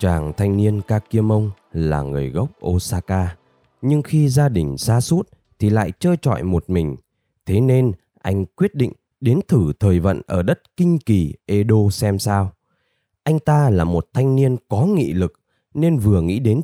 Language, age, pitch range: Vietnamese, 20-39, 90-130 Hz